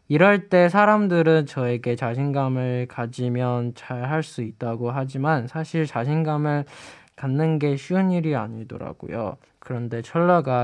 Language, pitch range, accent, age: Chinese, 125-160 Hz, Korean, 20-39